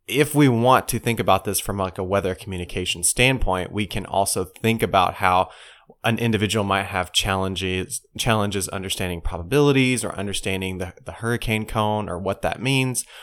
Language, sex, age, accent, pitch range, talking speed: English, male, 20-39, American, 95-115 Hz, 170 wpm